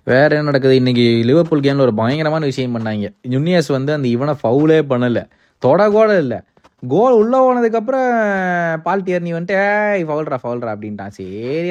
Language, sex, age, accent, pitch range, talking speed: Tamil, male, 20-39, native, 115-155 Hz, 150 wpm